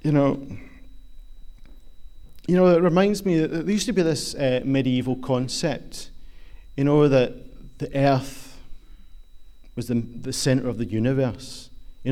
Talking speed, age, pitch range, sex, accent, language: 145 wpm, 40-59, 115-155 Hz, male, British, English